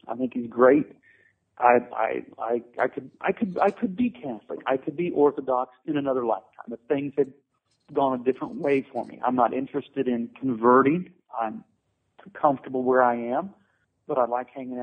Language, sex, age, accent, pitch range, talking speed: English, male, 40-59, American, 125-160 Hz, 180 wpm